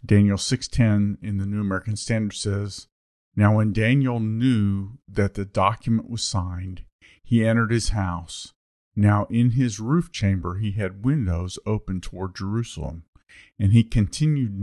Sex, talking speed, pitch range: male, 145 wpm, 95-110 Hz